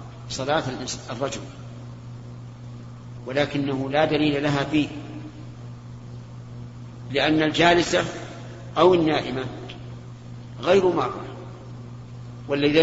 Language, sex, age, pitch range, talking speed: Arabic, male, 50-69, 120-145 Hz, 65 wpm